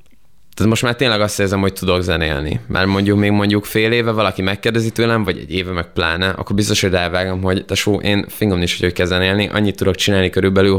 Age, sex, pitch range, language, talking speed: 20-39, male, 90-105 Hz, Hungarian, 205 wpm